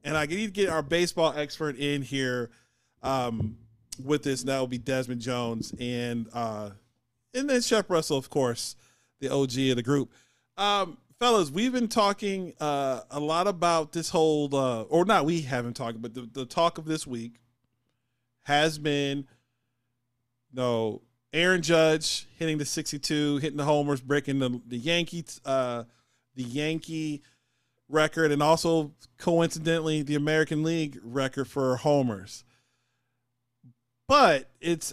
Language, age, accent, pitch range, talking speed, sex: English, 40-59, American, 125-160 Hz, 150 wpm, male